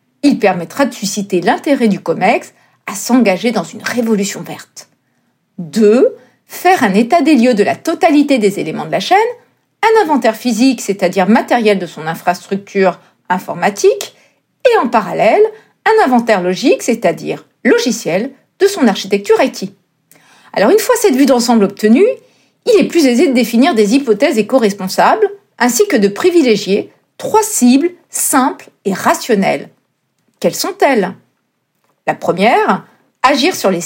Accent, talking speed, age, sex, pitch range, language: French, 140 wpm, 40-59, female, 200-290 Hz, French